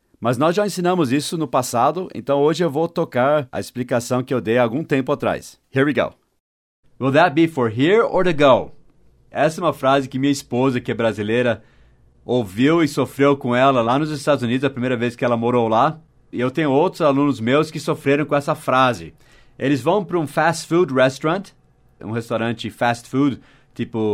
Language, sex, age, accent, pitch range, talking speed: Portuguese, male, 40-59, Brazilian, 120-145 Hz, 200 wpm